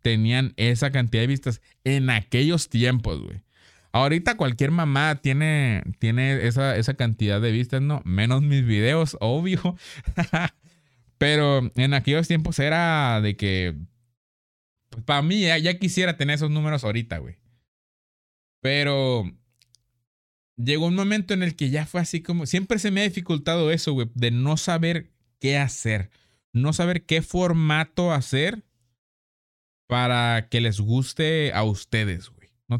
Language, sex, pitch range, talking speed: Spanish, male, 115-160 Hz, 140 wpm